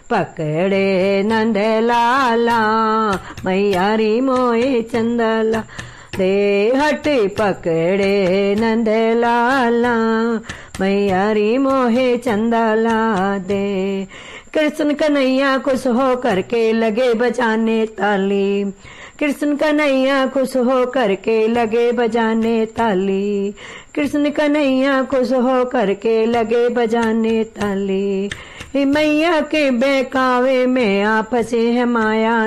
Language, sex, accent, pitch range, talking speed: Hindi, female, native, 200-255 Hz, 85 wpm